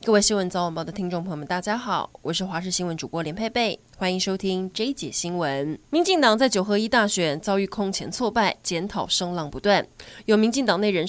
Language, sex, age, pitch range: Chinese, female, 20-39, 180-230 Hz